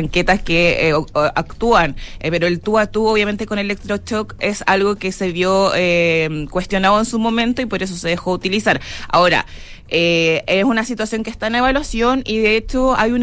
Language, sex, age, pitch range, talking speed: Spanish, female, 20-39, 170-205 Hz, 200 wpm